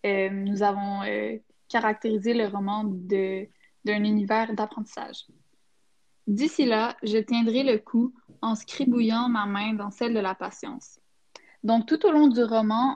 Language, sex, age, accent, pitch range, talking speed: French, female, 10-29, Canadian, 210-245 Hz, 150 wpm